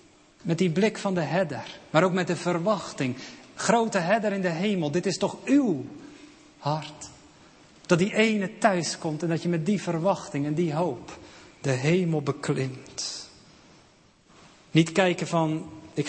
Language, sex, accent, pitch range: Dutch, male, Dutch, 145-185 Hz